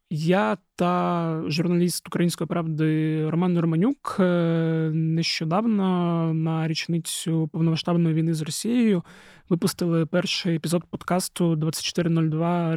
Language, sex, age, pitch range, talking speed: Ukrainian, male, 20-39, 155-175 Hz, 90 wpm